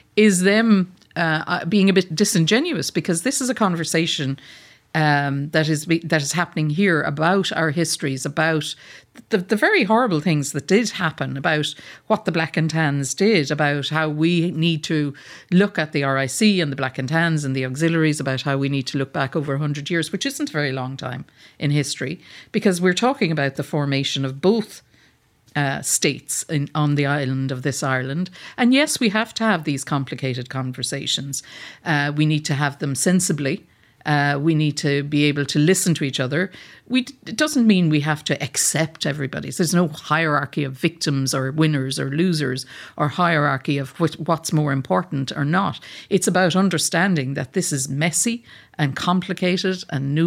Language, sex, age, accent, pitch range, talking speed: English, female, 50-69, Irish, 140-180 Hz, 185 wpm